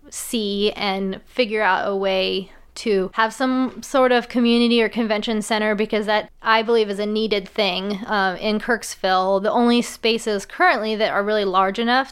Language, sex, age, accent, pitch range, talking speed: English, female, 20-39, American, 205-235 Hz, 175 wpm